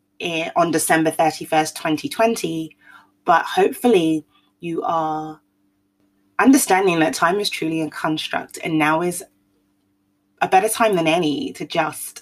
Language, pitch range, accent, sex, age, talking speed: English, 155-250 Hz, British, female, 20-39, 125 wpm